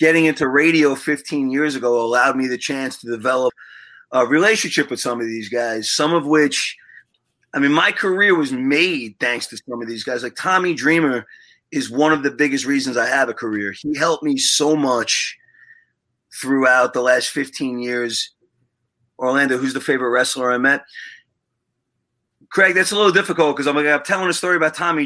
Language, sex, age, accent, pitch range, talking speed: English, male, 30-49, American, 125-165 Hz, 180 wpm